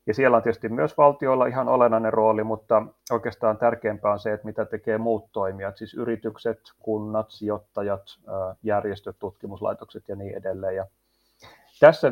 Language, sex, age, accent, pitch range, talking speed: Finnish, male, 30-49, native, 100-115 Hz, 150 wpm